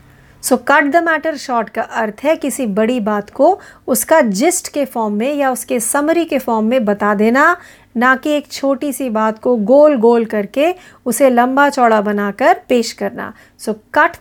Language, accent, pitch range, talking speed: Marathi, native, 220-285 Hz, 155 wpm